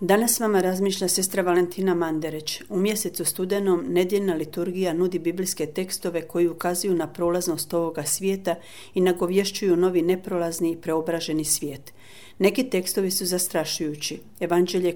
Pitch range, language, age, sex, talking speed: 160-185 Hz, Croatian, 40-59, female, 130 wpm